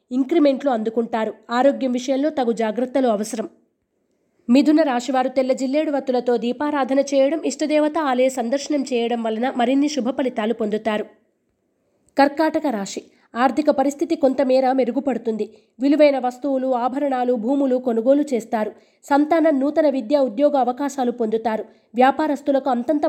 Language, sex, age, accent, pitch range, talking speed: Telugu, female, 20-39, native, 240-290 Hz, 110 wpm